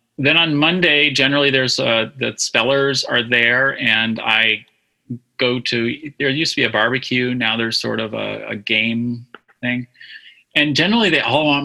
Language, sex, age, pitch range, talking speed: English, male, 30-49, 115-150 Hz, 170 wpm